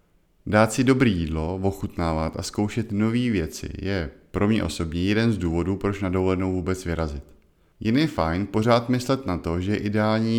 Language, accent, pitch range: Czech, native, 85-110 Hz